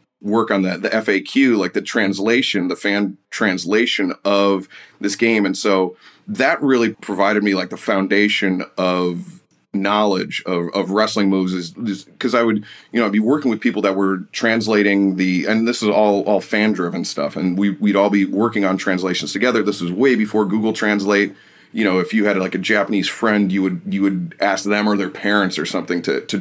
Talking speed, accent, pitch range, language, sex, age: 200 wpm, American, 95-105 Hz, English, male, 30-49